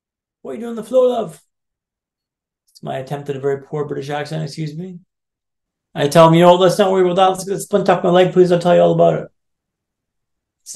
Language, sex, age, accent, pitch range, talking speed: English, male, 30-49, American, 180-210 Hz, 235 wpm